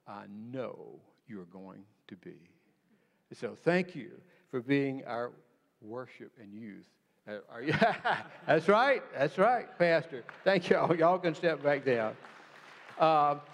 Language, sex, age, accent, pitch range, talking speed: English, male, 60-79, American, 135-175 Hz, 130 wpm